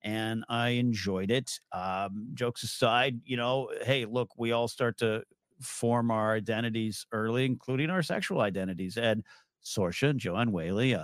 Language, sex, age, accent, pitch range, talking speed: English, male, 50-69, American, 115-155 Hz, 145 wpm